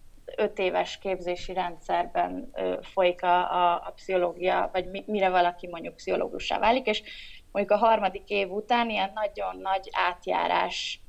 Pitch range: 180-210 Hz